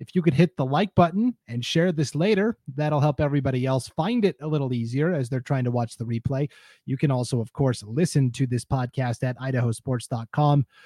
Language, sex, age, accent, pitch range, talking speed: English, male, 30-49, American, 130-170 Hz, 210 wpm